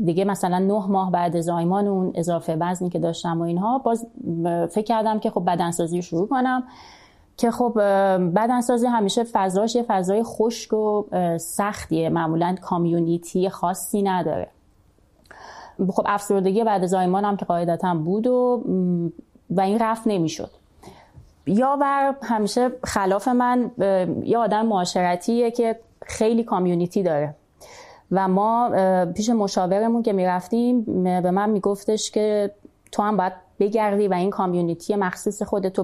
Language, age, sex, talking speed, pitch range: Persian, 30-49, female, 135 wpm, 185-225 Hz